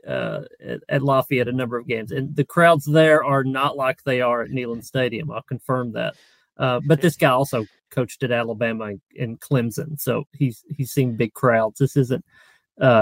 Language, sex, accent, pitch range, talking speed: English, male, American, 125-145 Hz, 195 wpm